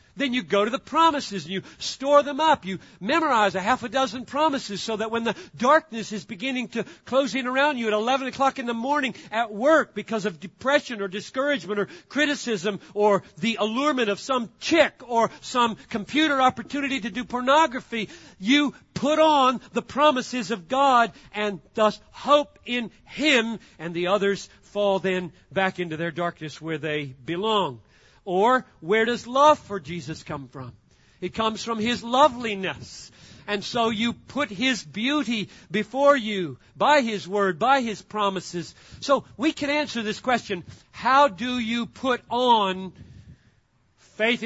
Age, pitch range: 50-69, 190-260 Hz